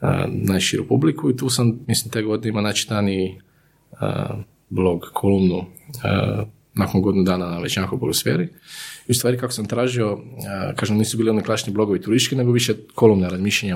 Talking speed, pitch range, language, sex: 160 wpm, 95-125 Hz, Croatian, male